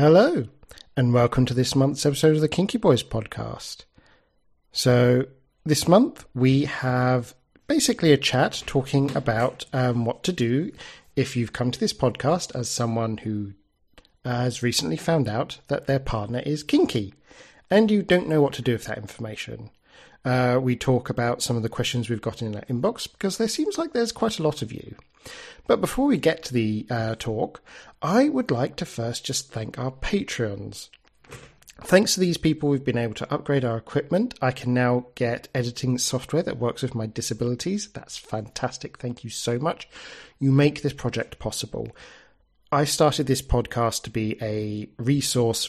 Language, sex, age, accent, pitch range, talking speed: English, male, 50-69, British, 115-150 Hz, 185 wpm